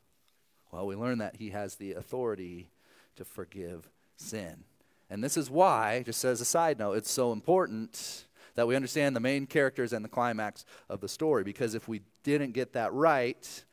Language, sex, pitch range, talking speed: English, male, 115-150 Hz, 185 wpm